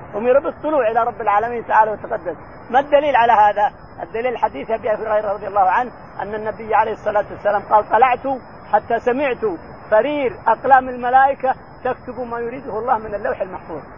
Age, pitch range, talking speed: 50-69, 225-280 Hz, 165 wpm